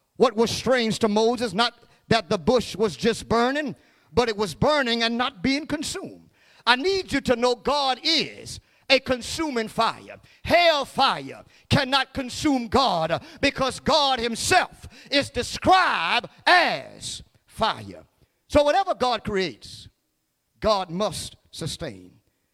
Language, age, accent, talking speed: English, 50-69, American, 130 wpm